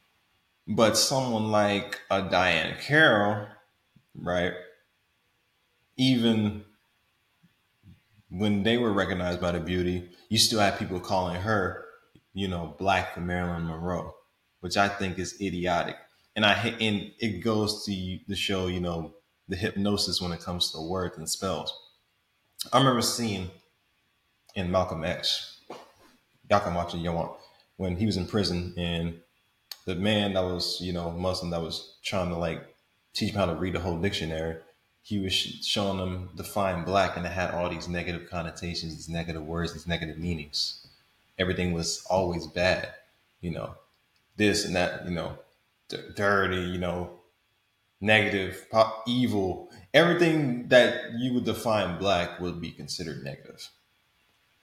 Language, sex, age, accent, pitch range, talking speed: English, male, 20-39, American, 85-105 Hz, 145 wpm